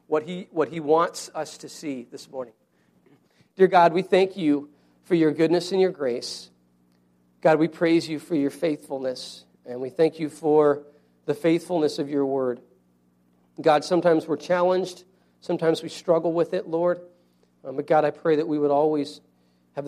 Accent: American